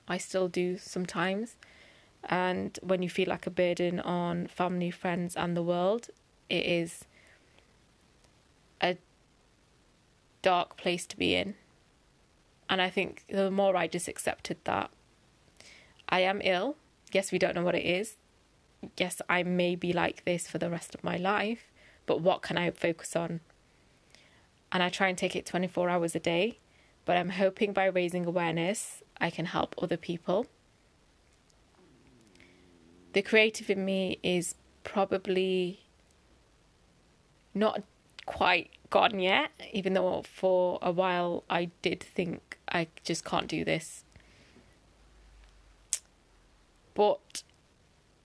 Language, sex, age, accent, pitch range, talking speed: English, female, 20-39, British, 170-190 Hz, 135 wpm